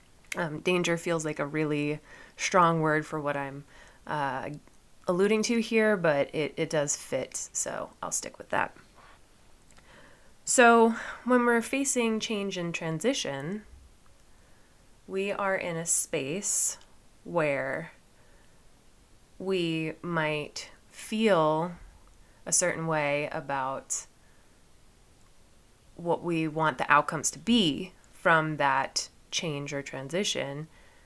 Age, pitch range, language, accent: 20-39, 150-195 Hz, English, American